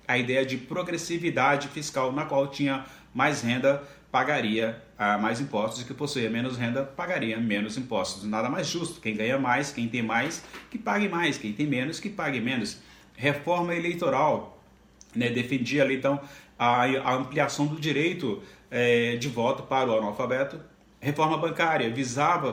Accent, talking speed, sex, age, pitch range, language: Brazilian, 150 wpm, male, 30-49, 125-150 Hz, Portuguese